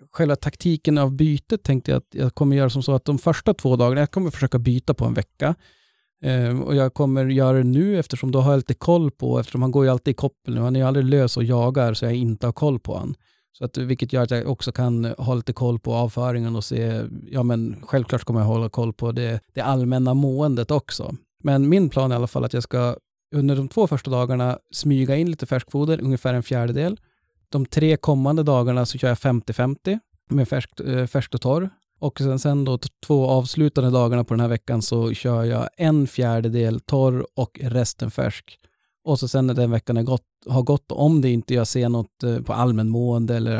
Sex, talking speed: male, 220 wpm